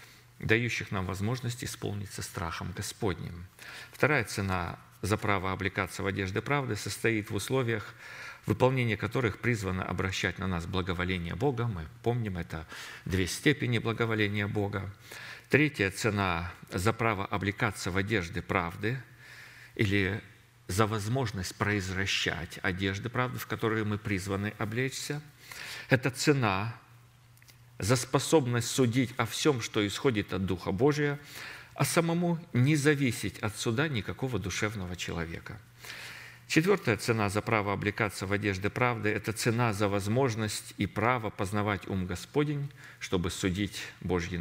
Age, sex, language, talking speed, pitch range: 50-69, male, Russian, 125 wpm, 100-125 Hz